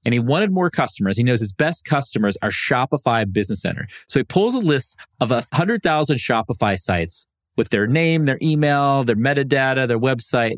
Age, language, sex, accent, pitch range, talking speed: 30-49, English, male, American, 115-175 Hz, 180 wpm